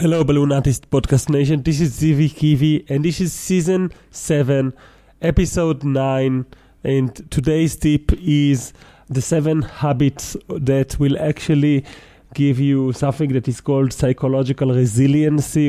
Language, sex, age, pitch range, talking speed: English, male, 30-49, 125-145 Hz, 130 wpm